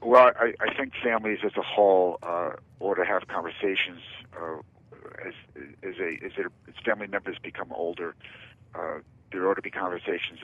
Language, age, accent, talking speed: English, 50-69, American, 170 wpm